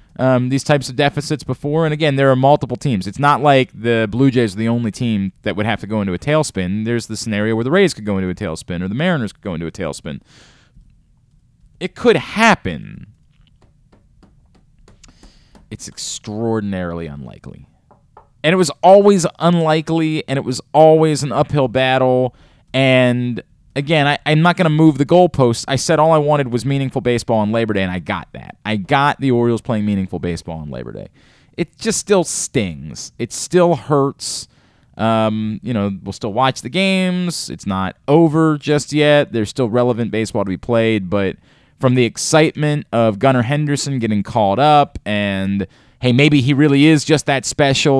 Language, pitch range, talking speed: English, 110-150 Hz, 185 wpm